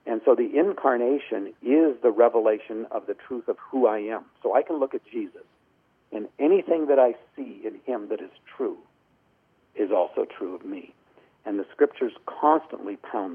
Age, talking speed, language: 60-79, 180 wpm, English